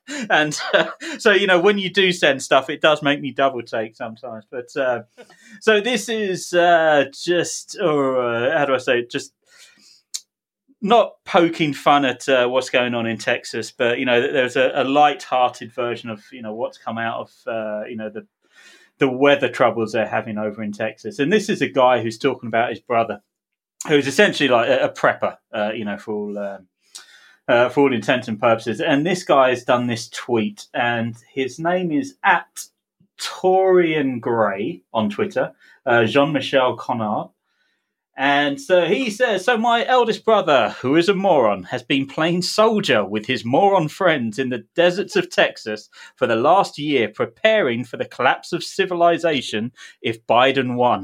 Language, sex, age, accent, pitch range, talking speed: English, male, 30-49, British, 115-180 Hz, 180 wpm